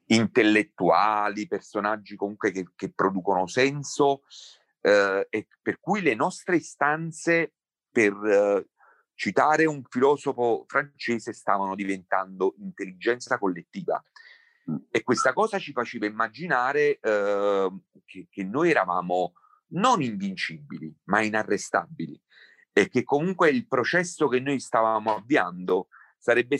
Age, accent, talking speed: 40-59, native, 110 wpm